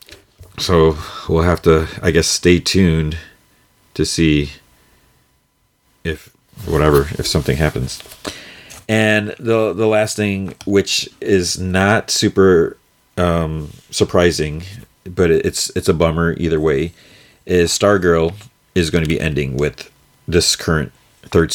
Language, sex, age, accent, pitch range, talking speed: English, male, 40-59, American, 80-95 Hz, 120 wpm